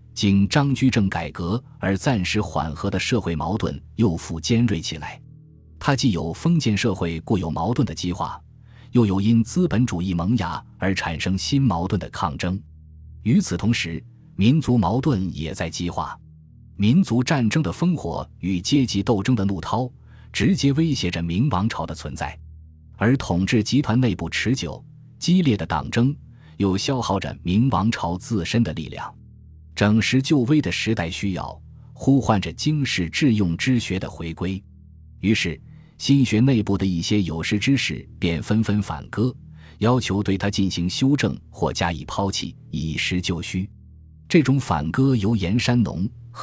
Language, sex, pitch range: Chinese, male, 85-120 Hz